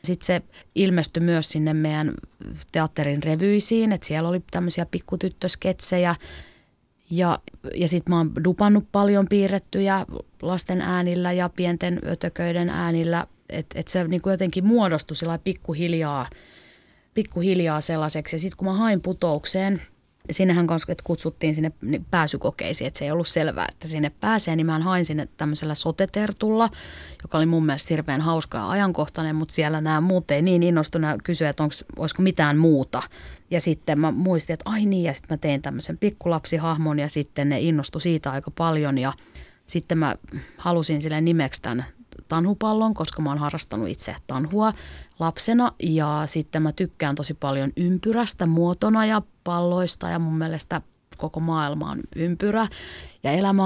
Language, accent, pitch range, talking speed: Finnish, native, 155-185 Hz, 150 wpm